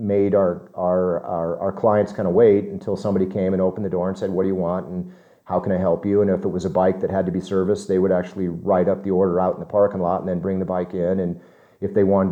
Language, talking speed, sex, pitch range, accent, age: English, 295 wpm, male, 95-115 Hz, American, 40-59